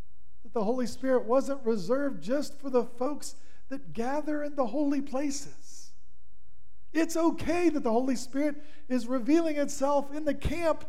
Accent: American